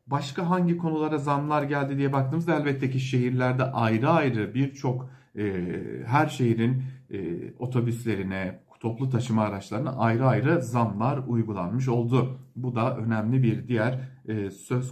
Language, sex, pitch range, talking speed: German, male, 115-150 Hz, 120 wpm